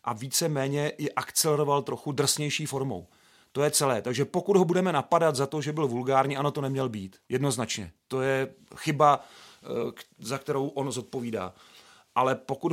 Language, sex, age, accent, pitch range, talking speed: Czech, male, 40-59, native, 135-155 Hz, 165 wpm